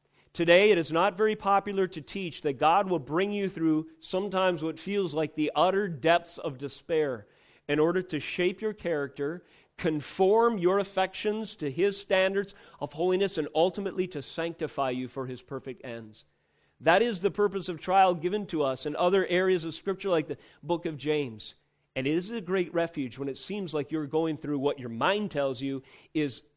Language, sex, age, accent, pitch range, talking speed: English, male, 40-59, American, 150-205 Hz, 190 wpm